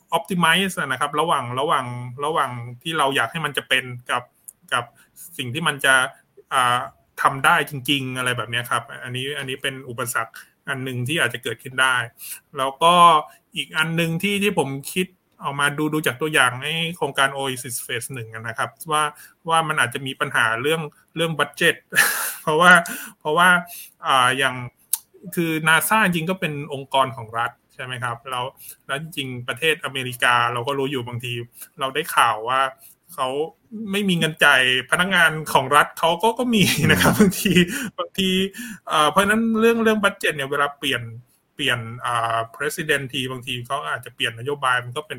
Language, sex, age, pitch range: Thai, male, 20-39, 130-165 Hz